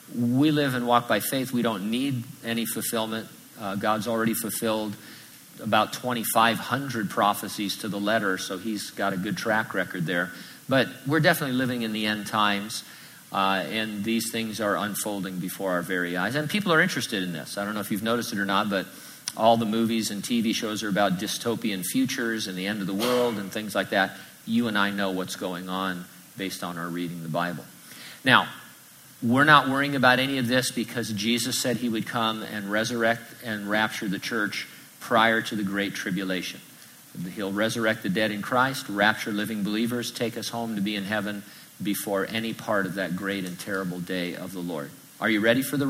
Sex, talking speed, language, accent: male, 200 wpm, English, American